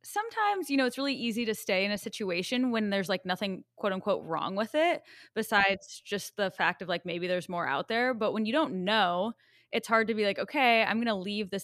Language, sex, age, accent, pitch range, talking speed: English, female, 20-39, American, 180-220 Hz, 235 wpm